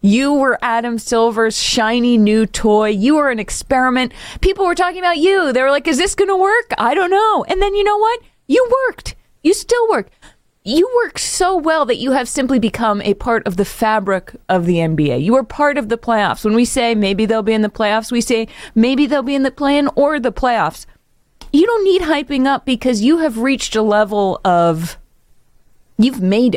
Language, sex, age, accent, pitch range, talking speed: English, female, 30-49, American, 210-325 Hz, 215 wpm